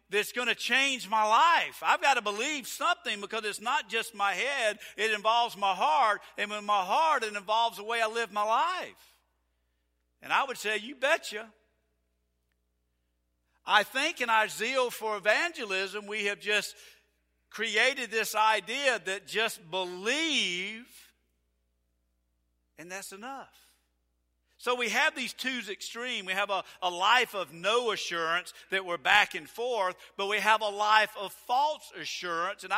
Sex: male